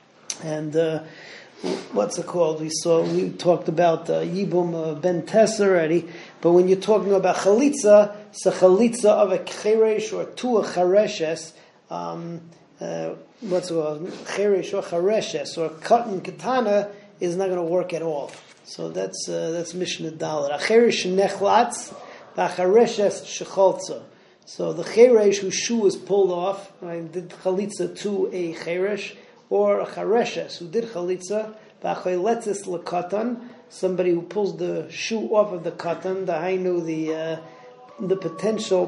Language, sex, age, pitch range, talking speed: English, male, 30-49, 170-200 Hz, 145 wpm